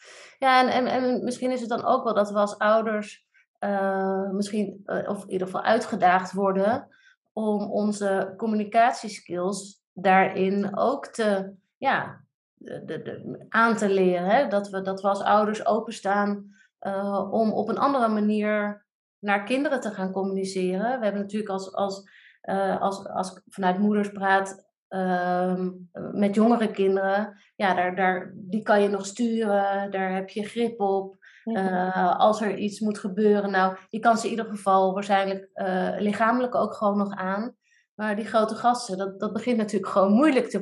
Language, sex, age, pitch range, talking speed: Dutch, female, 30-49, 195-225 Hz, 170 wpm